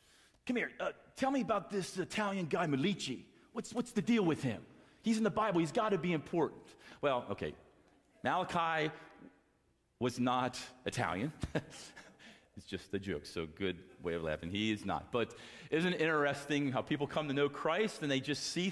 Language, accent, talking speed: English, American, 185 wpm